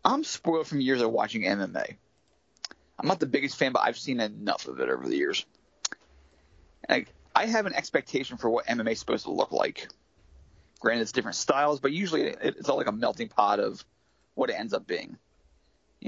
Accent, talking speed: American, 200 wpm